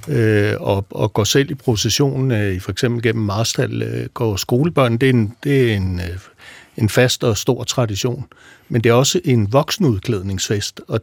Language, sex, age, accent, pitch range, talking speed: Danish, male, 60-79, native, 115-150 Hz, 165 wpm